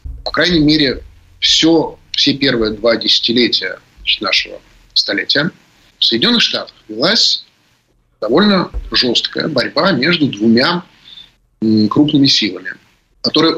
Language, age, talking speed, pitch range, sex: Russian, 30-49, 95 wpm, 110-140 Hz, male